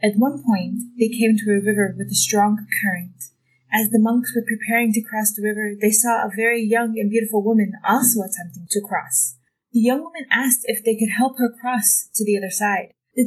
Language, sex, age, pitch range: English, female, 20-39, 200-240 Hz